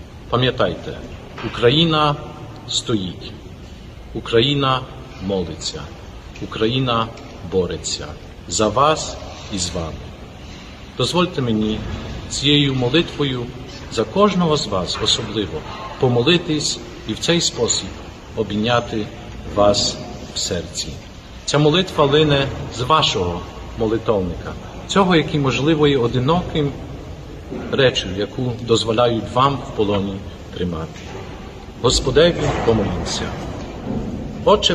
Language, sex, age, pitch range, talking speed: Ukrainian, male, 50-69, 100-150 Hz, 90 wpm